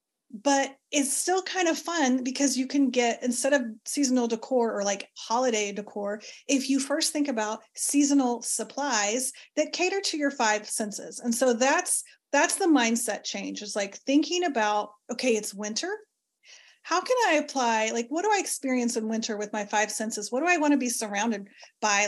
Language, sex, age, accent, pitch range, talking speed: English, female, 30-49, American, 235-310 Hz, 185 wpm